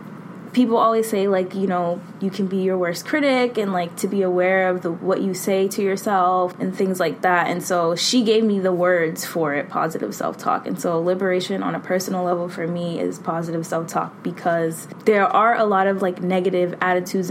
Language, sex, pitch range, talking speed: English, female, 175-195 Hz, 210 wpm